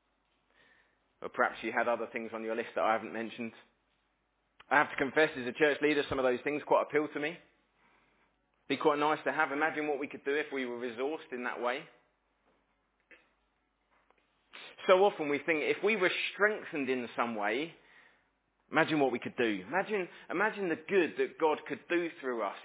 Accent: British